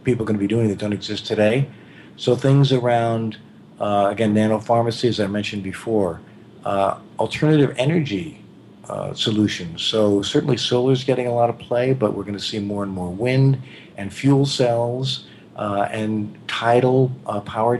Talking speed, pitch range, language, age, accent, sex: 170 wpm, 100-125 Hz, English, 50-69, American, male